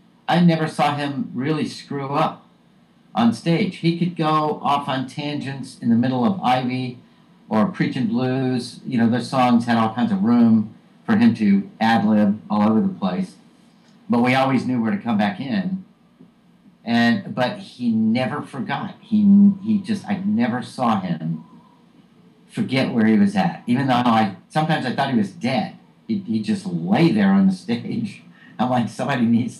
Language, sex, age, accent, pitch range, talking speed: English, male, 50-69, American, 170-215 Hz, 180 wpm